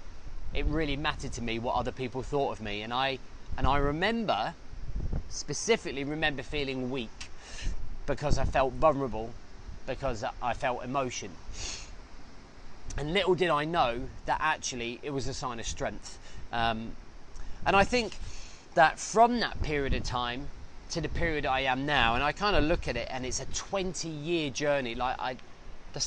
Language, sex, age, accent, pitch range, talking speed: English, male, 30-49, British, 110-150 Hz, 170 wpm